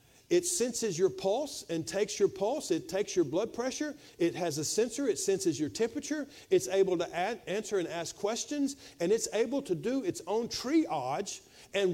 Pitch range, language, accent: 175-290 Hz, English, American